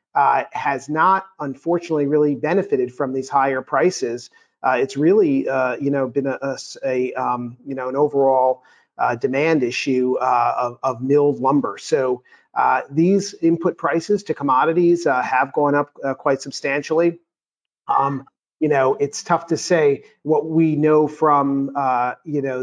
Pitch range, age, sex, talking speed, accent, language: 130-160 Hz, 40-59, male, 160 wpm, American, English